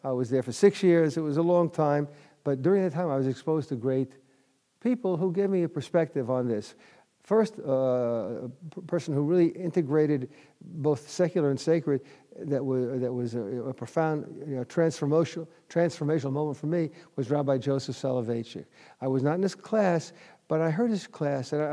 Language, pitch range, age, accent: English, 135-170 Hz, 50-69, American